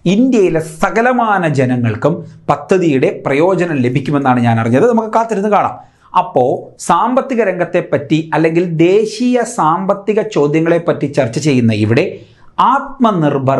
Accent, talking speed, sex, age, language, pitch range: native, 95 wpm, male, 40-59, Malayalam, 135-205 Hz